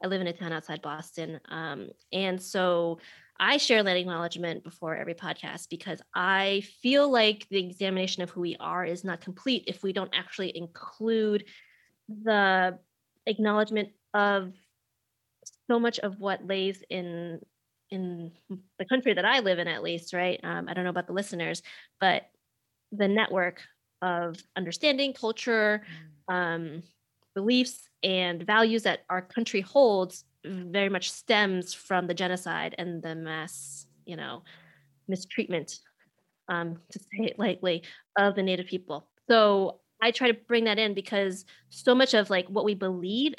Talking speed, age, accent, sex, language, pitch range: 155 wpm, 20-39, American, female, English, 180-215 Hz